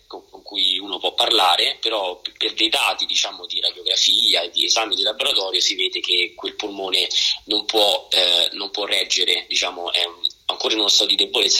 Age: 30-49